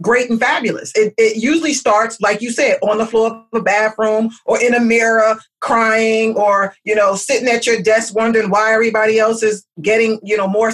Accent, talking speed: American, 205 wpm